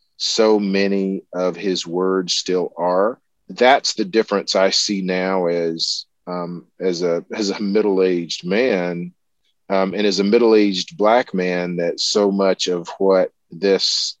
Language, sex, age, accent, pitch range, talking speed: English, male, 40-59, American, 90-105 Hz, 145 wpm